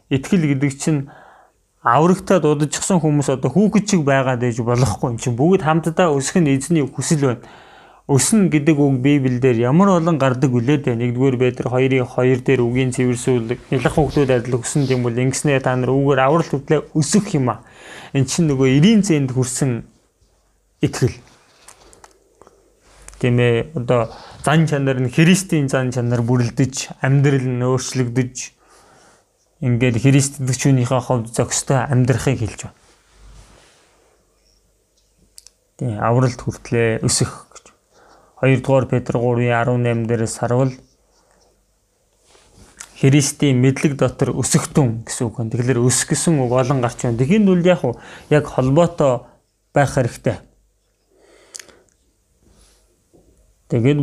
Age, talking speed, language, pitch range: 30-49, 85 wpm, English, 125-150 Hz